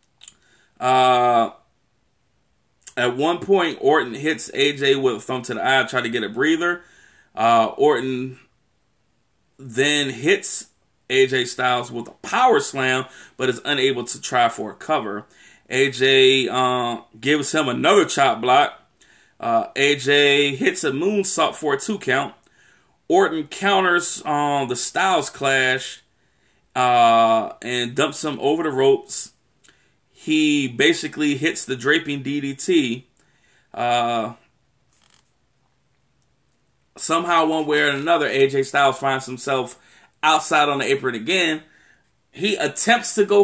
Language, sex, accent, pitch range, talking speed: English, male, American, 130-175 Hz, 125 wpm